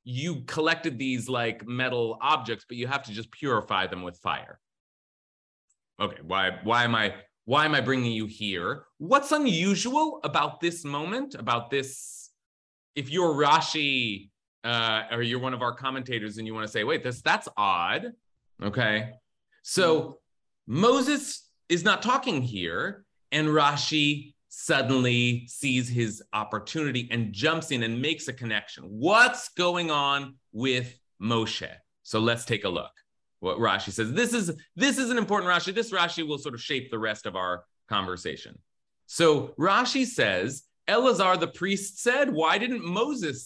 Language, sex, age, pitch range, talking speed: English, male, 30-49, 115-170 Hz, 155 wpm